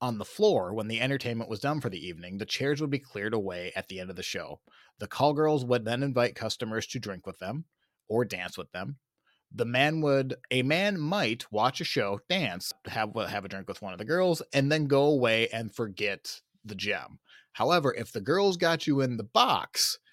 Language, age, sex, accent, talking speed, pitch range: English, 30-49, male, American, 220 wpm, 105-150 Hz